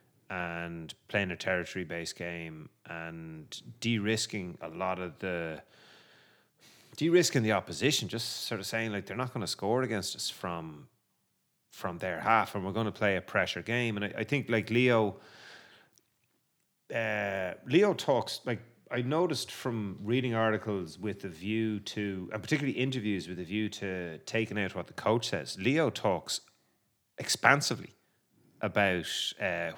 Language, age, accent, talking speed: English, 30-49, Irish, 150 wpm